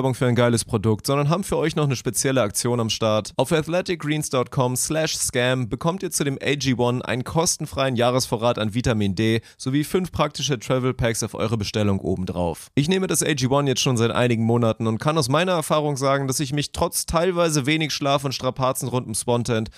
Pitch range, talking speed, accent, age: 115-155 Hz, 190 wpm, German, 30-49